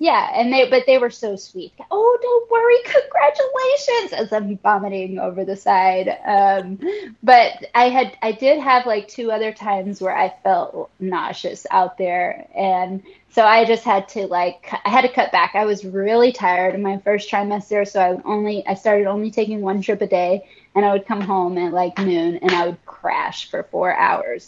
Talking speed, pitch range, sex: 200 wpm, 195-275 Hz, female